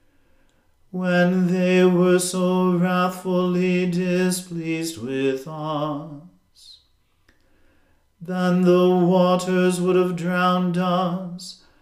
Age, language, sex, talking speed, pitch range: 40-59, English, male, 75 wpm, 175-185 Hz